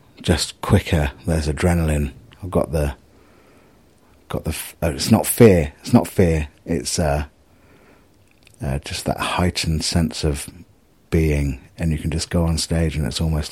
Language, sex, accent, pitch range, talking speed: English, male, British, 75-95 Hz, 160 wpm